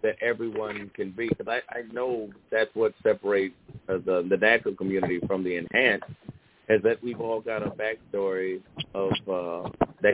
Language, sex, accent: English, male, American